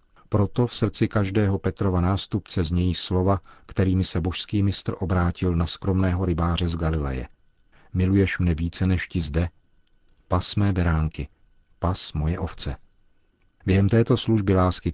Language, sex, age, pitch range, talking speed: Czech, male, 50-69, 85-95 Hz, 135 wpm